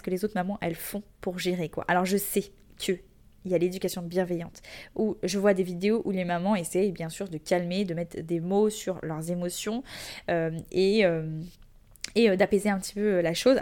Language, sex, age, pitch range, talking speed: French, female, 20-39, 180-225 Hz, 210 wpm